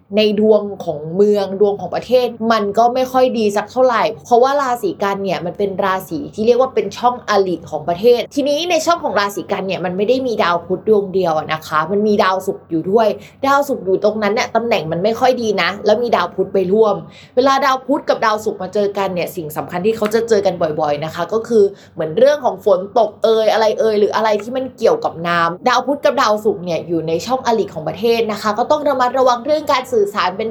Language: Thai